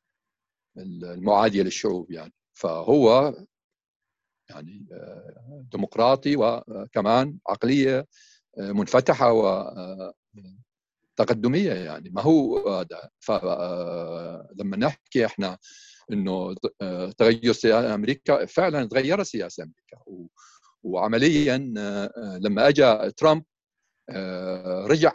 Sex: male